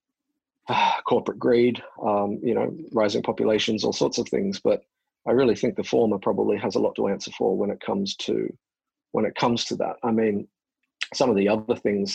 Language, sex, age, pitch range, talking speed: English, male, 40-59, 105-120 Hz, 200 wpm